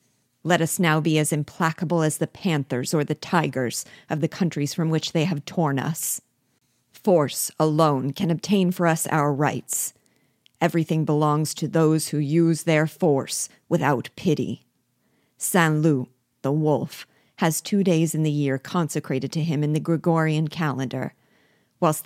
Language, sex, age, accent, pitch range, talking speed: English, female, 40-59, American, 145-170 Hz, 150 wpm